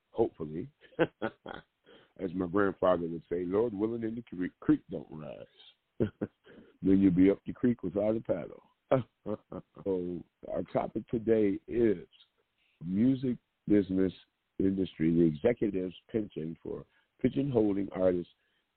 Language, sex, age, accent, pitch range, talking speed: English, male, 50-69, American, 85-105 Hz, 115 wpm